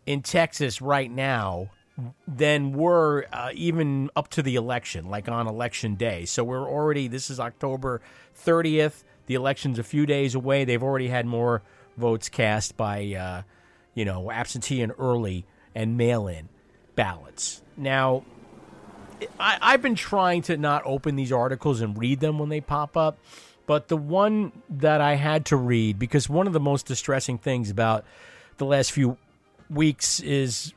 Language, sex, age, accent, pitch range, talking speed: English, male, 40-59, American, 120-155 Hz, 160 wpm